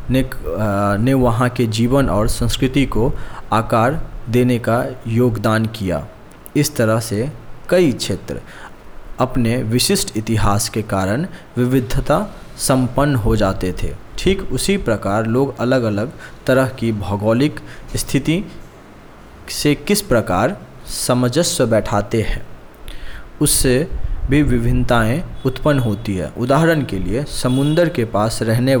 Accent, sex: native, male